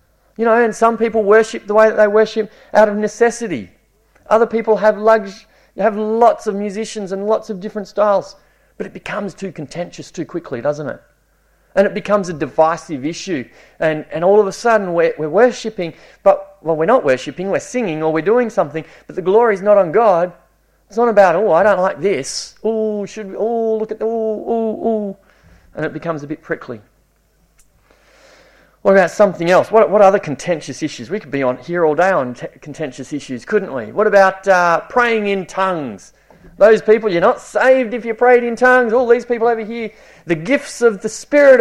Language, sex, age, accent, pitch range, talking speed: English, male, 30-49, Australian, 170-220 Hz, 200 wpm